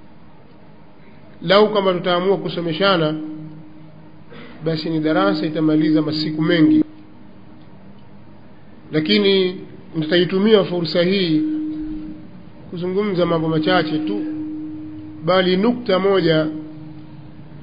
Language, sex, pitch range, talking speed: Swahili, male, 155-185 Hz, 70 wpm